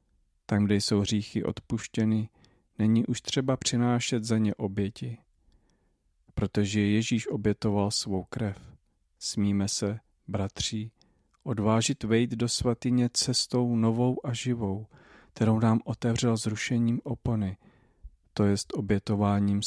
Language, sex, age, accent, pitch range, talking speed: Czech, male, 40-59, native, 100-115 Hz, 110 wpm